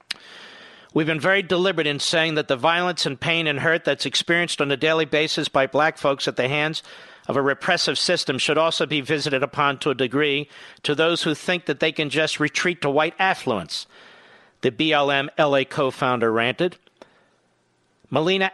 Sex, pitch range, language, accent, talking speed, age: male, 145-175 Hz, English, American, 180 wpm, 50-69